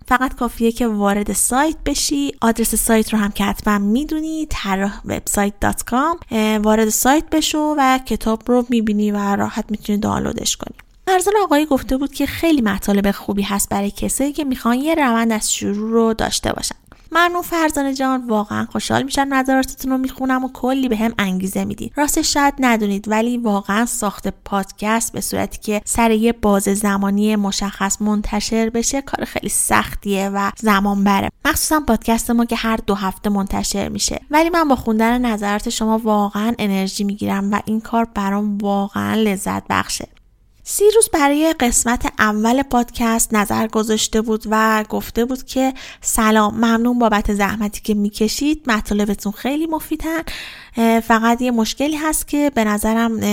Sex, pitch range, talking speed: female, 205-260 Hz, 160 wpm